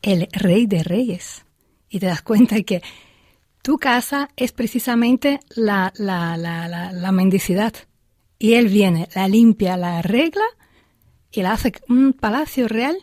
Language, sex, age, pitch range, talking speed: Spanish, female, 40-59, 175-230 Hz, 150 wpm